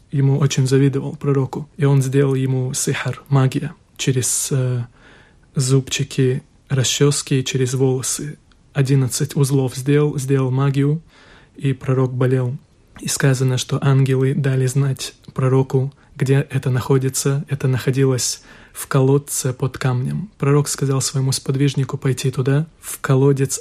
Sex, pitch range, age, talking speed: male, 130-145 Hz, 20-39, 120 wpm